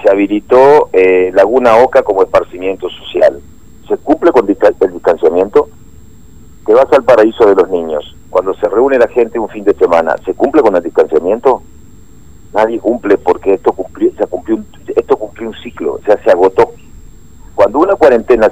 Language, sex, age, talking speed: Spanish, male, 50-69, 165 wpm